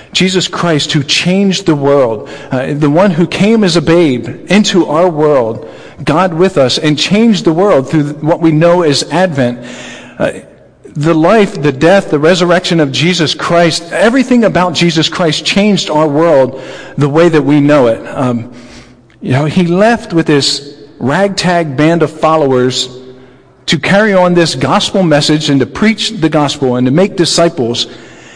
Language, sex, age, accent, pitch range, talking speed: English, male, 50-69, American, 135-175 Hz, 170 wpm